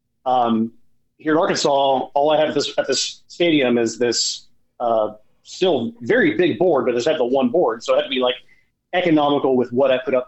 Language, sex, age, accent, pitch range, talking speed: English, male, 30-49, American, 120-150 Hz, 205 wpm